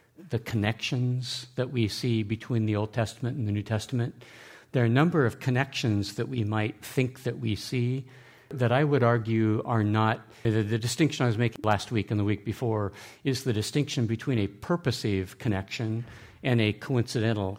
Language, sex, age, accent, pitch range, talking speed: English, male, 50-69, American, 105-125 Hz, 185 wpm